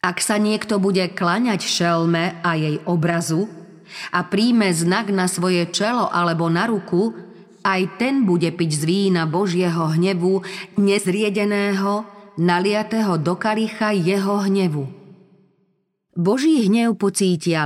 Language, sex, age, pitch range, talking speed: Slovak, female, 30-49, 165-200 Hz, 120 wpm